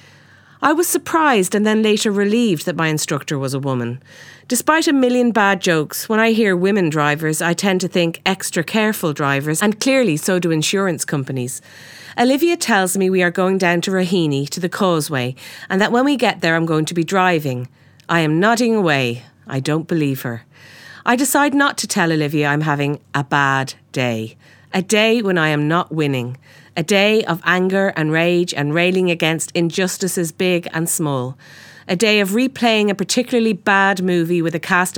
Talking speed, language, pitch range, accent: 185 wpm, English, 145-200 Hz, Irish